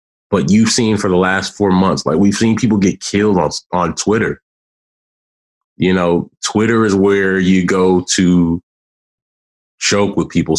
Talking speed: 160 wpm